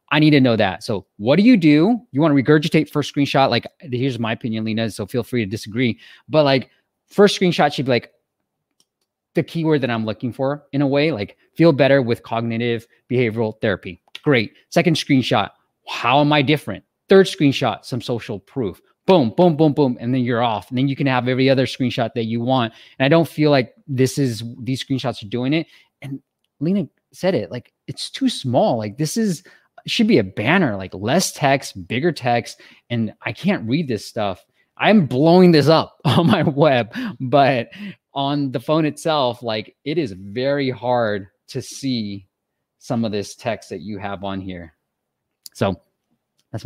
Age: 20-39